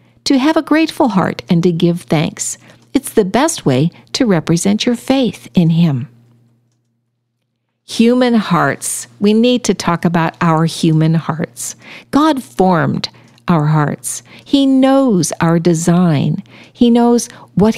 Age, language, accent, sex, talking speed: 50-69, English, American, female, 135 wpm